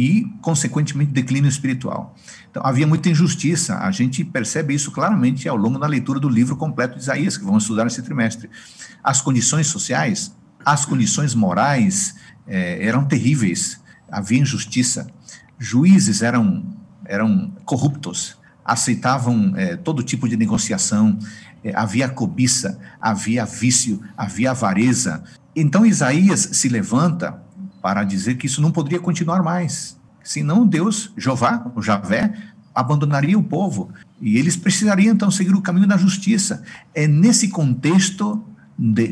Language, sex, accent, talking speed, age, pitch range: Portuguese, male, Brazilian, 135 wpm, 50-69, 125-190 Hz